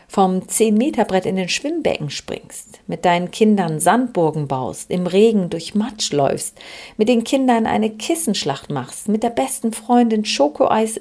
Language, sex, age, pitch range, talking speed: German, female, 40-59, 175-225 Hz, 145 wpm